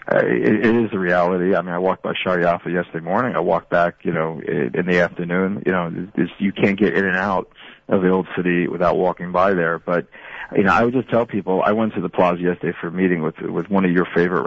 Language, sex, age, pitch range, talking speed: English, male, 40-59, 85-95 Hz, 260 wpm